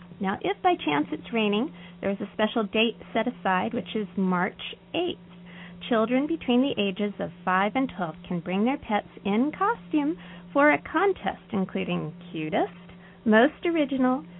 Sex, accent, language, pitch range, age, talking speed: female, American, English, 180-265 Hz, 30-49, 155 wpm